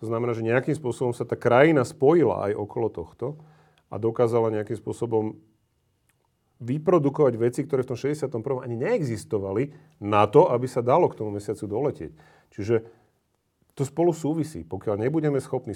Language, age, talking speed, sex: Slovak, 40-59, 150 wpm, male